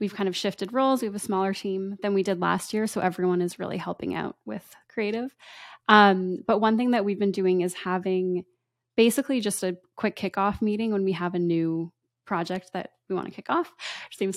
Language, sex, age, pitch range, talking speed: English, female, 20-39, 180-210 Hz, 215 wpm